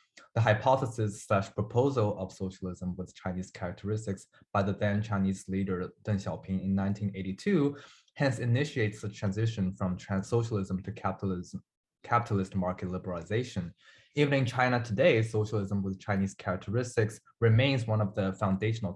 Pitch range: 95-115 Hz